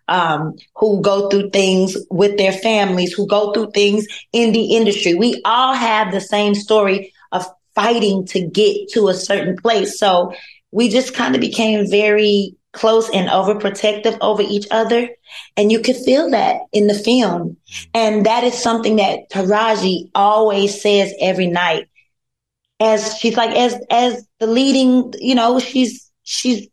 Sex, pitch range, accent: female, 190-230 Hz, American